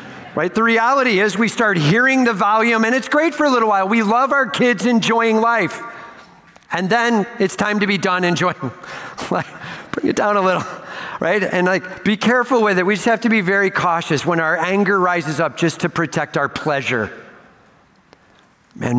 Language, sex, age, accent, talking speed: English, male, 50-69, American, 195 wpm